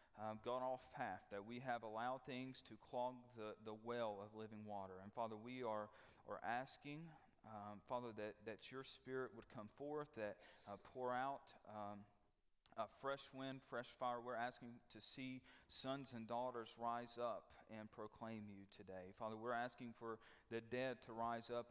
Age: 40-59